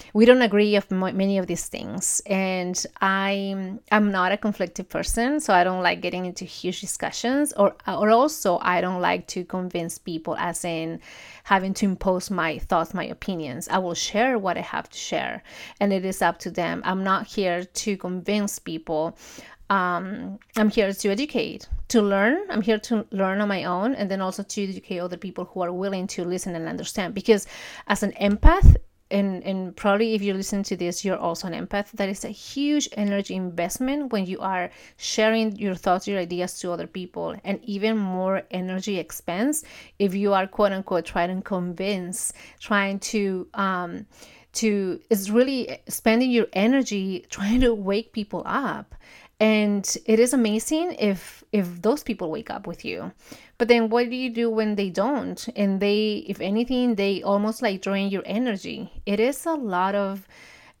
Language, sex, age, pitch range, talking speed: English, female, 30-49, 185-220 Hz, 185 wpm